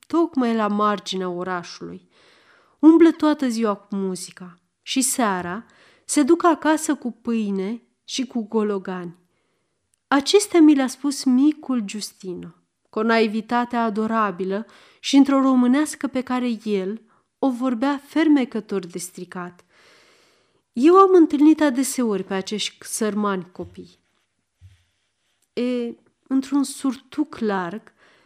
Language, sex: Romanian, female